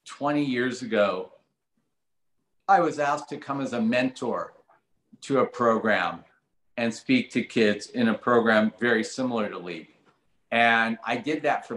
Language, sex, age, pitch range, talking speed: English, male, 50-69, 105-120 Hz, 155 wpm